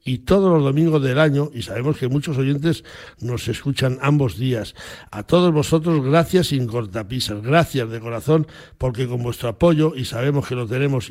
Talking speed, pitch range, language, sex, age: 180 wpm, 120-145 Hz, Spanish, male, 60-79